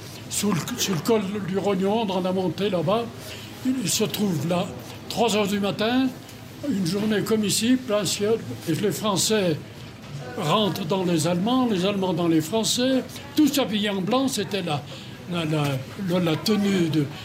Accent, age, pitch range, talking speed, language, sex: French, 60-79, 175-220 Hz, 165 wpm, French, male